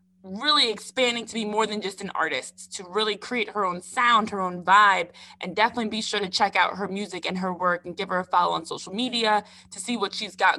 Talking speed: 245 wpm